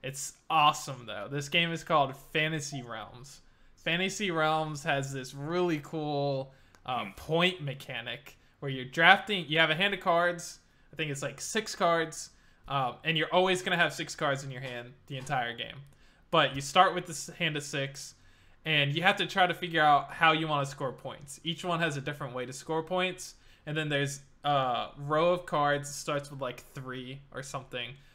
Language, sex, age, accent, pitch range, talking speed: English, male, 20-39, American, 135-170 Hz, 200 wpm